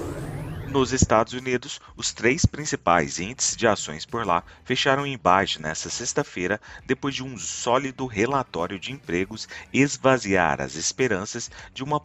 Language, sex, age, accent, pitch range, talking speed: Portuguese, male, 40-59, Brazilian, 85-125 Hz, 140 wpm